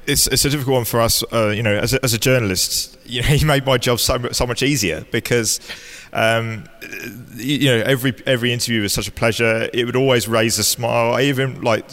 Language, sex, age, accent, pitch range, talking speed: English, male, 20-39, British, 105-125 Hz, 225 wpm